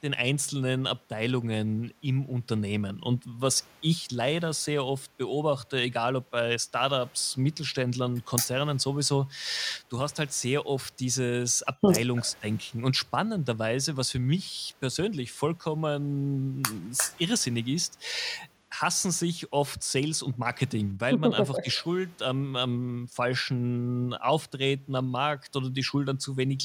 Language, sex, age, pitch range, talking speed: German, male, 30-49, 125-150 Hz, 130 wpm